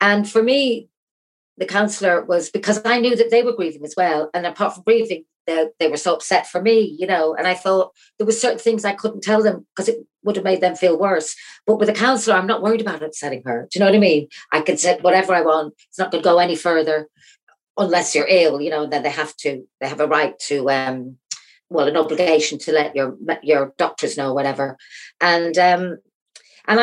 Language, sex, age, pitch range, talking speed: English, female, 40-59, 155-210 Hz, 235 wpm